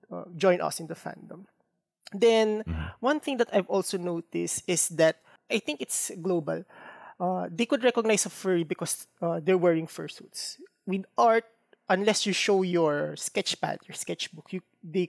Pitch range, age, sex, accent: 165-200 Hz, 20-39, male, Filipino